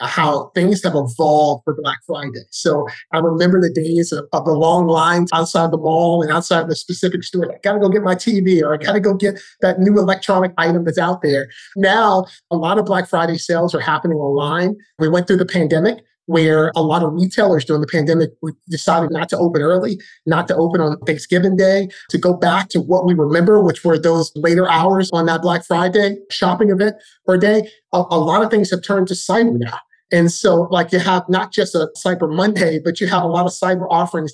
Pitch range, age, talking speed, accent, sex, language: 165-190 Hz, 30-49, 215 wpm, American, male, English